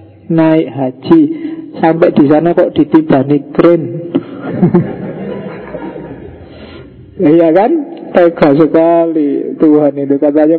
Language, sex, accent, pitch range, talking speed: Indonesian, male, native, 145-185 Hz, 95 wpm